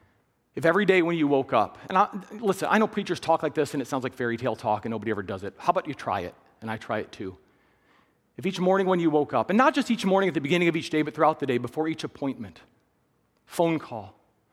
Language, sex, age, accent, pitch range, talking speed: English, male, 40-59, American, 120-190 Hz, 270 wpm